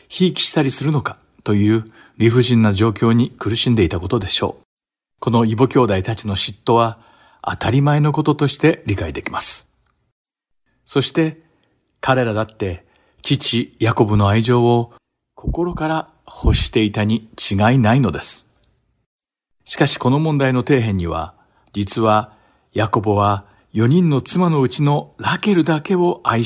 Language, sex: Japanese, male